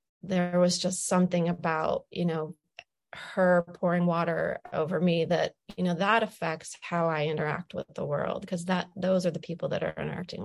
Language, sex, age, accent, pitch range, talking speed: English, female, 30-49, American, 170-185 Hz, 185 wpm